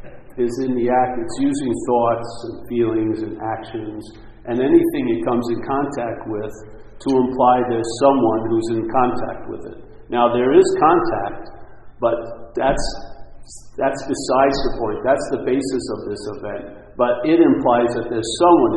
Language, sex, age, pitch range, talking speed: English, male, 50-69, 115-155 Hz, 155 wpm